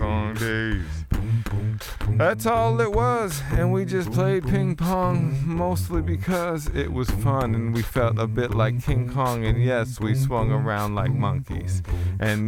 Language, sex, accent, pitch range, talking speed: English, male, American, 90-120 Hz, 150 wpm